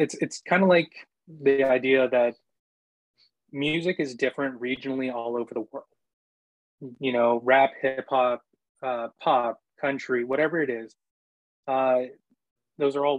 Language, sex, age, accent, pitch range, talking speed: English, male, 20-39, American, 120-145 Hz, 140 wpm